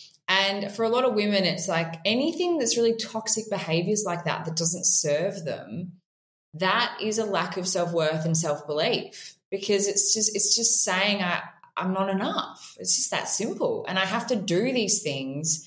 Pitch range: 160-215 Hz